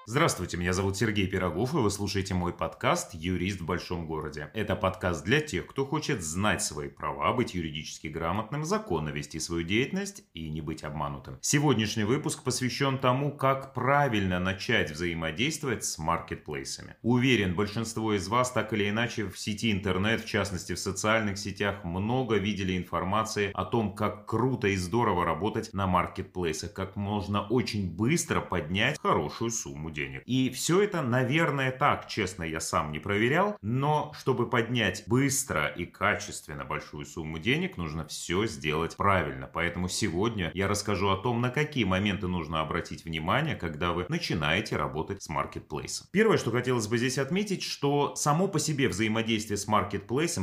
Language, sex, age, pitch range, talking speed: Russian, male, 30-49, 85-125 Hz, 160 wpm